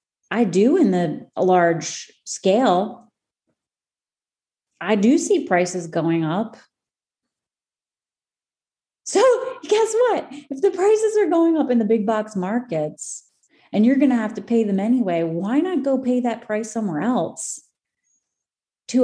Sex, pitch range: female, 180-255 Hz